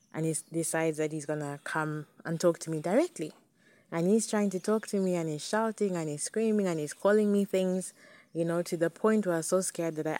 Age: 20-39